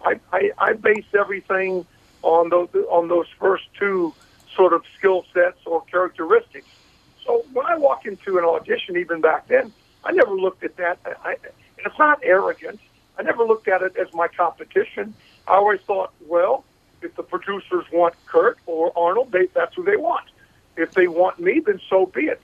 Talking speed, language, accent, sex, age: 185 wpm, English, American, male, 50-69